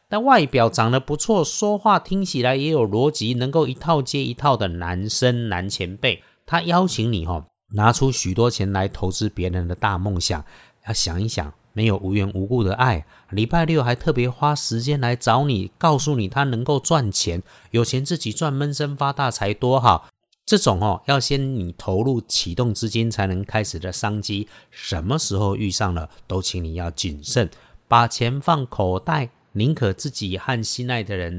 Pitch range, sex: 95-140 Hz, male